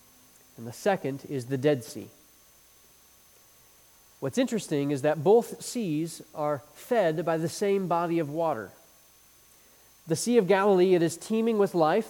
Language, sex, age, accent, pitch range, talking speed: English, male, 30-49, American, 140-200 Hz, 150 wpm